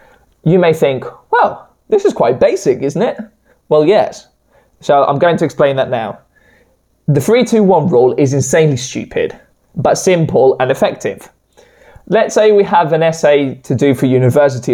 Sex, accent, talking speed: male, British, 165 wpm